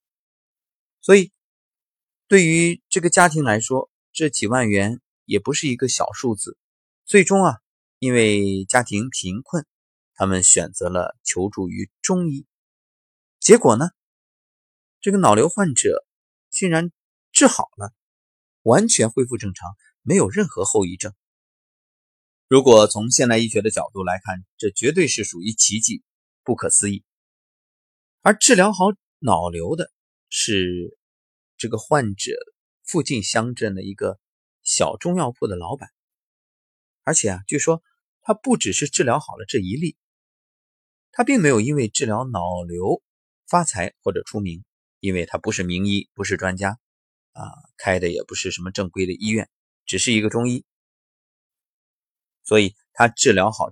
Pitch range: 95-145 Hz